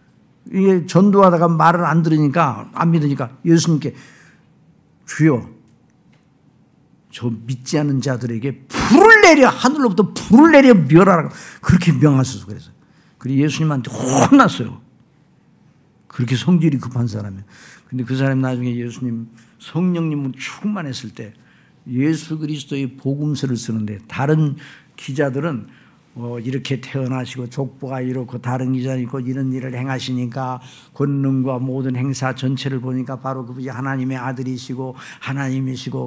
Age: 50-69